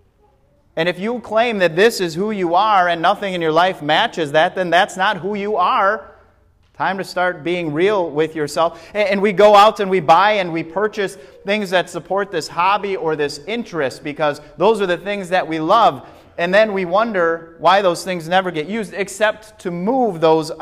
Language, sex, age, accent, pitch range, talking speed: English, male, 30-49, American, 115-175 Hz, 205 wpm